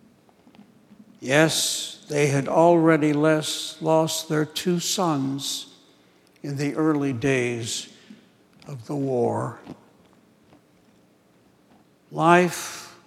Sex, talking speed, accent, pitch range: male, 80 wpm, American, 135-180 Hz